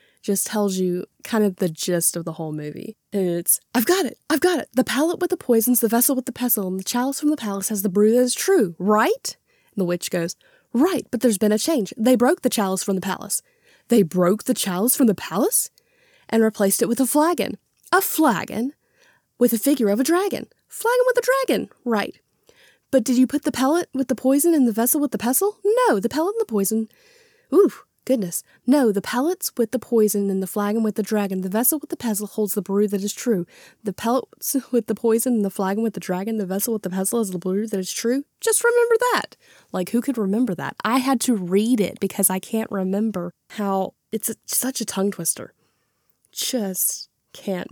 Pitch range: 195-265 Hz